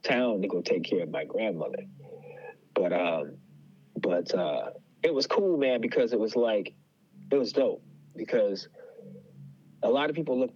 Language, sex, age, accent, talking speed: English, male, 30-49, American, 165 wpm